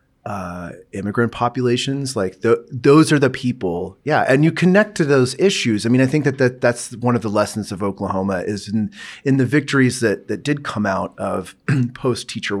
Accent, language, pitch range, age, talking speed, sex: American, English, 100-125 Hz, 30-49, 200 wpm, male